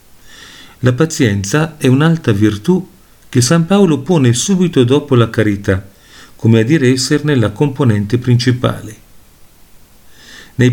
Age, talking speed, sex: 40-59, 115 wpm, male